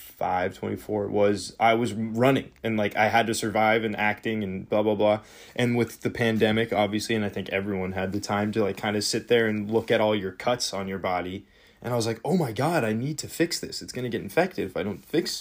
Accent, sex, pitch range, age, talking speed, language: American, male, 105-125 Hz, 20-39, 260 wpm, English